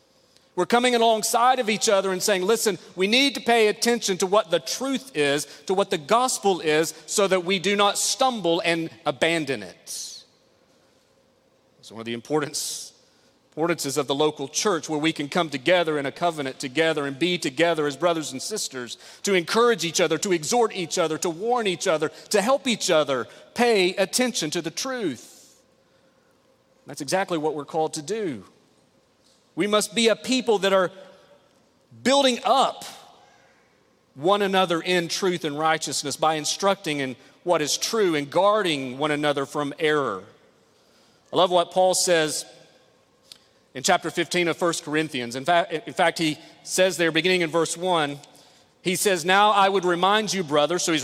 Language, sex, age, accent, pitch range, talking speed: English, male, 40-59, American, 155-205 Hz, 170 wpm